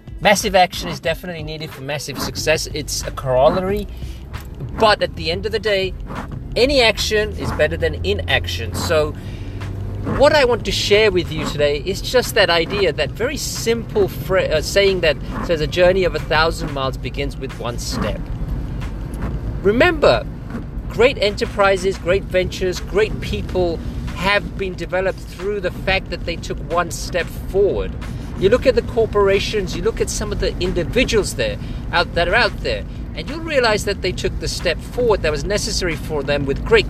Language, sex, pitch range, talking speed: English, male, 140-195 Hz, 175 wpm